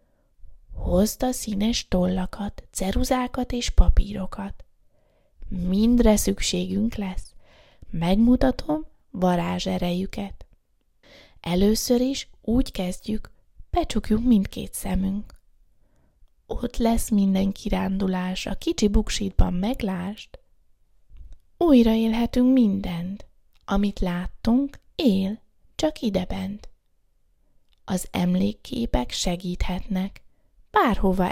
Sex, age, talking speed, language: female, 20-39, 75 wpm, Hungarian